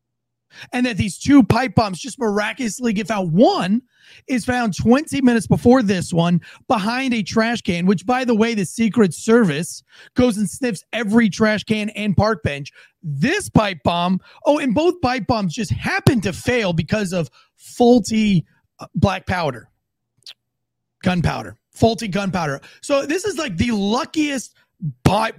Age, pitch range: 30-49, 170-235 Hz